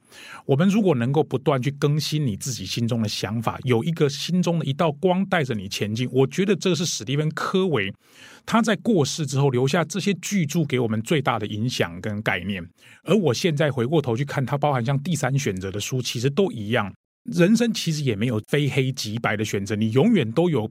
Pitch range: 110-150 Hz